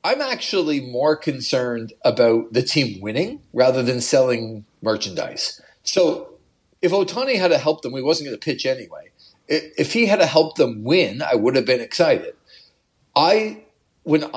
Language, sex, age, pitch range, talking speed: English, male, 40-59, 130-175 Hz, 165 wpm